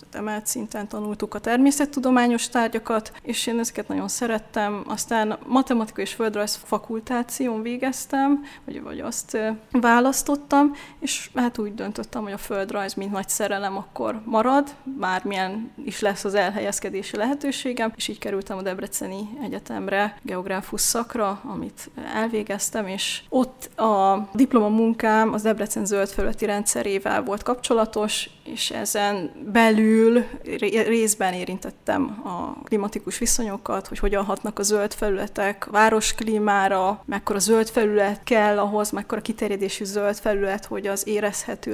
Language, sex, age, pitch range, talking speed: Hungarian, female, 20-39, 200-235 Hz, 125 wpm